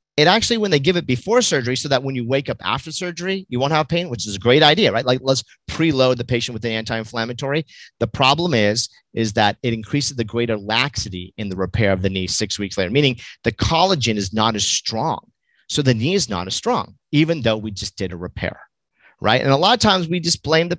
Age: 40-59